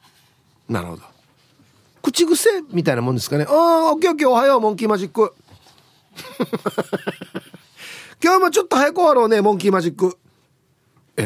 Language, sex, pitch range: Japanese, male, 135-225 Hz